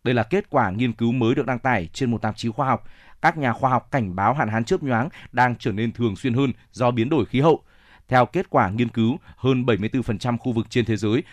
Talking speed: 260 wpm